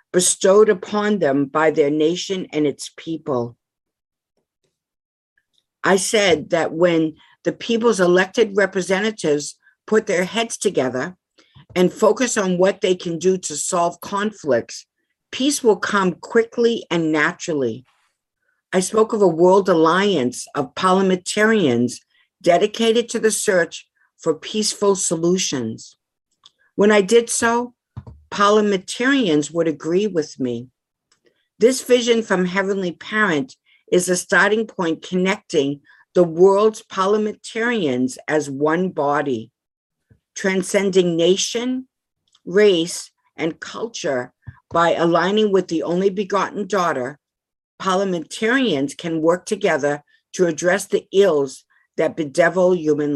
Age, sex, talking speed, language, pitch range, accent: 50-69, female, 115 wpm, English, 160-210 Hz, American